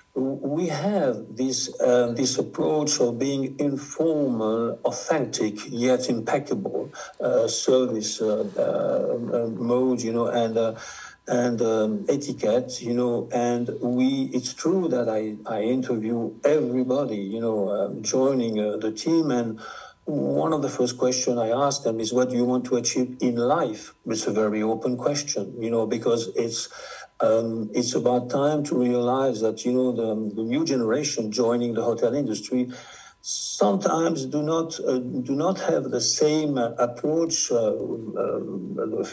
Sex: male